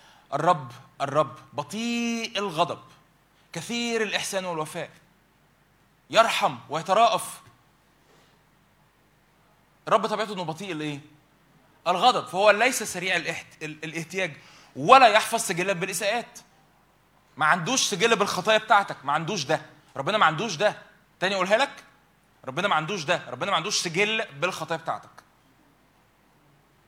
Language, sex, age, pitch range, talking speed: Arabic, male, 20-39, 150-210 Hz, 105 wpm